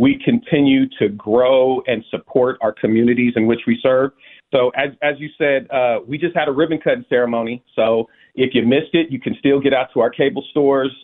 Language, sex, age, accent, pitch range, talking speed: English, male, 40-59, American, 120-140 Hz, 210 wpm